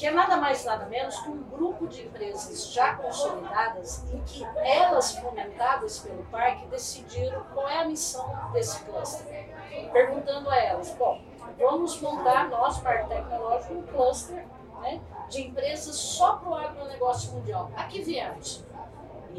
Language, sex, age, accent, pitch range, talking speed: Portuguese, female, 50-69, Brazilian, 265-440 Hz, 150 wpm